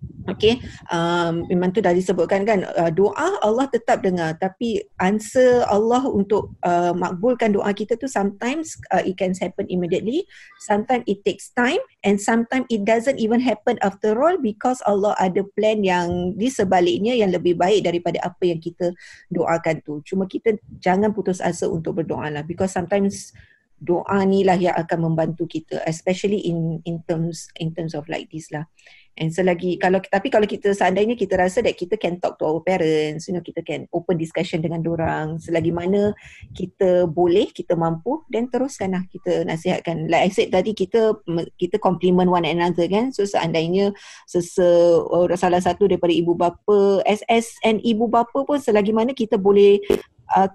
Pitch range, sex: 175-215 Hz, female